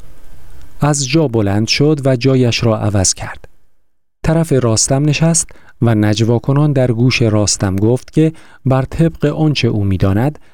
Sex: male